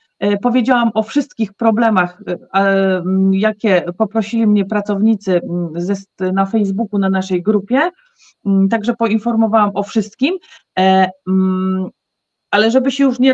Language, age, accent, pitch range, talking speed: Polish, 40-59, native, 195-255 Hz, 100 wpm